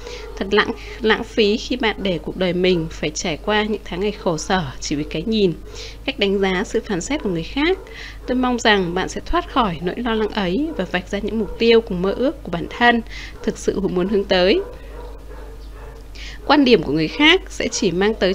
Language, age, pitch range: Vietnamese, 20-39, 185-240 Hz